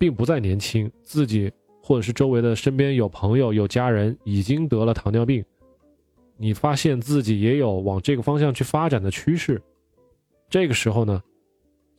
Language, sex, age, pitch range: Chinese, male, 20-39, 105-140 Hz